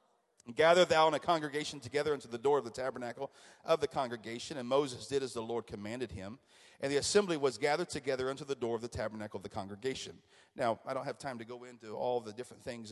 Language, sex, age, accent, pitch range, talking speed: English, male, 40-59, American, 120-155 Hz, 230 wpm